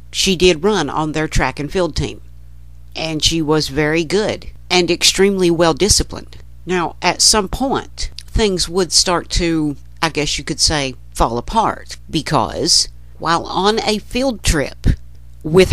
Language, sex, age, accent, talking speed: English, female, 50-69, American, 150 wpm